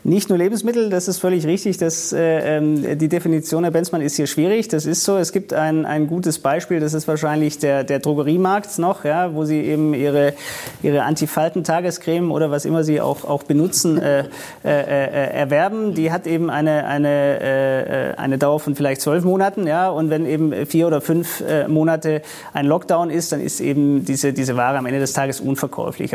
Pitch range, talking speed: 145-175 Hz, 185 wpm